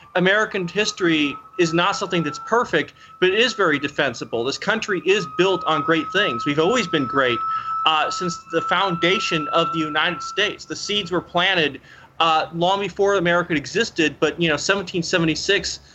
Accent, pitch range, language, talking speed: American, 150-185 Hz, English, 165 wpm